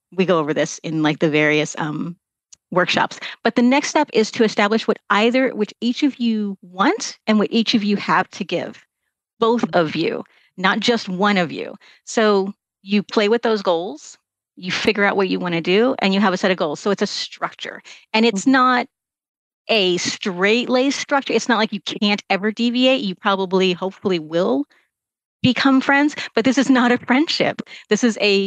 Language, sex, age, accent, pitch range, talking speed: English, female, 40-59, American, 180-225 Hz, 200 wpm